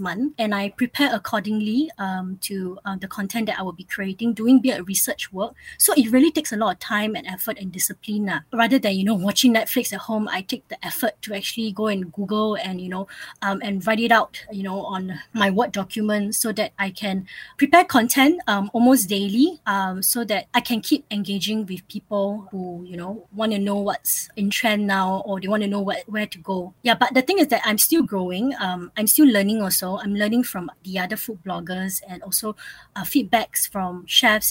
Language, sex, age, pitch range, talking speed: English, female, 20-39, 195-235 Hz, 220 wpm